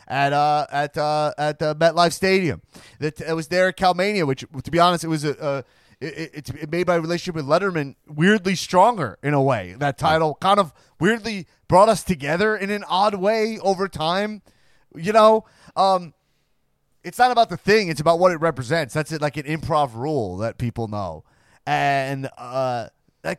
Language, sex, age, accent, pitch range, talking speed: English, male, 30-49, American, 135-175 Hz, 195 wpm